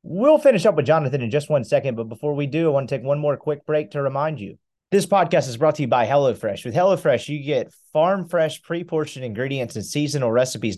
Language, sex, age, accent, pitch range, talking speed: English, male, 30-49, American, 125-160 Hz, 240 wpm